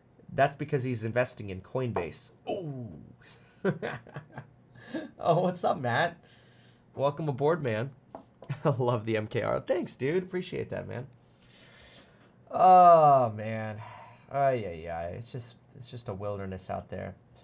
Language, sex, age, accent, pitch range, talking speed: English, male, 20-39, American, 110-155 Hz, 115 wpm